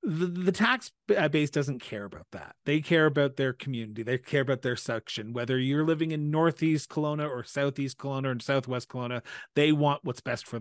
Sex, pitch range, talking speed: male, 130-155 Hz, 190 wpm